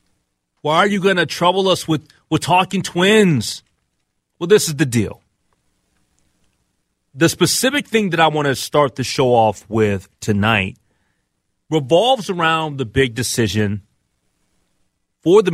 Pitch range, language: 110-170 Hz, English